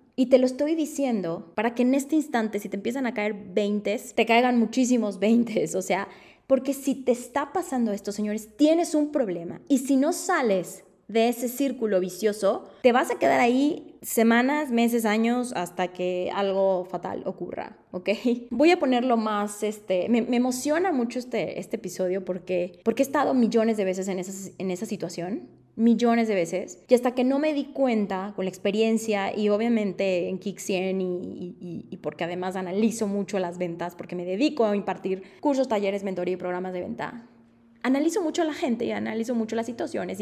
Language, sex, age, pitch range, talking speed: Spanish, female, 20-39, 185-250 Hz, 190 wpm